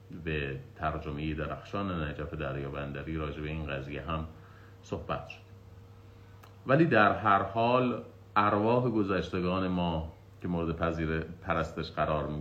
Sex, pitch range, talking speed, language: male, 75-95 Hz, 125 wpm, Persian